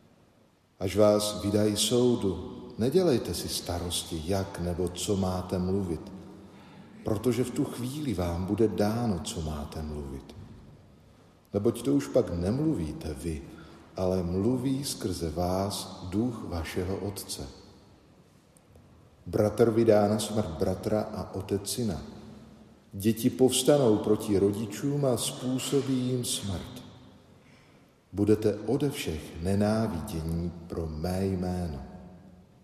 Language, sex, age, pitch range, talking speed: Slovak, male, 50-69, 90-110 Hz, 105 wpm